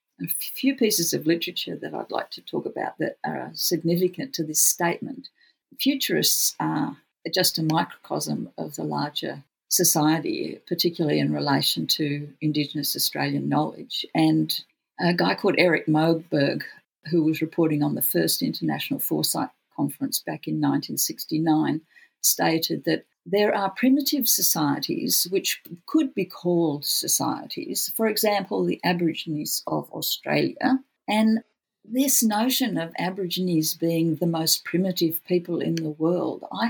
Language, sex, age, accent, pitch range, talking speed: English, female, 50-69, Australian, 160-215 Hz, 135 wpm